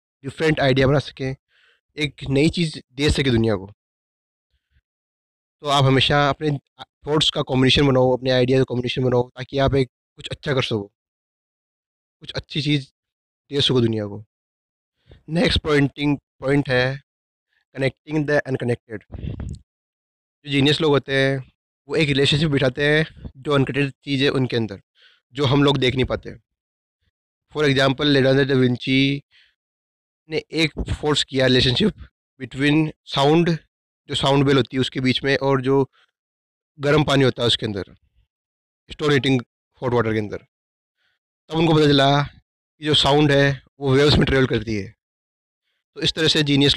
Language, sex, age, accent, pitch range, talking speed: Hindi, male, 30-49, native, 125-145 Hz, 155 wpm